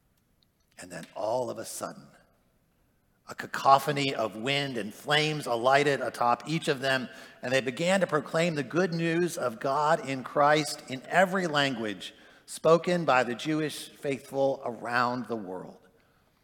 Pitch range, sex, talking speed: 130-170 Hz, male, 145 wpm